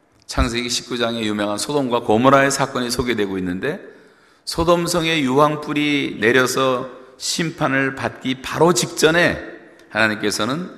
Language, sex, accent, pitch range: Korean, male, native, 115-170 Hz